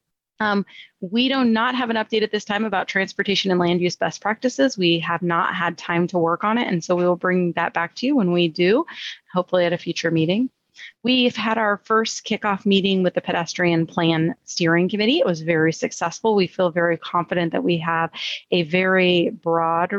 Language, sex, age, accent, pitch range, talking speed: English, female, 30-49, American, 175-200 Hz, 205 wpm